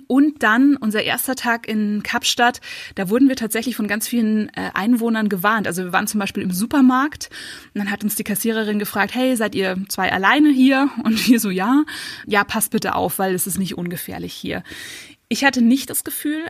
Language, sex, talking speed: German, female, 200 wpm